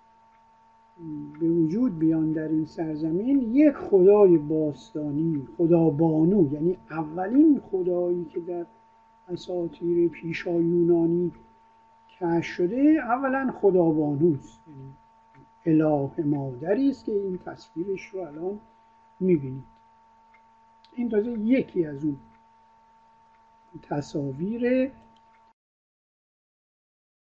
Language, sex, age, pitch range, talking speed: Persian, male, 50-69, 160-225 Hz, 80 wpm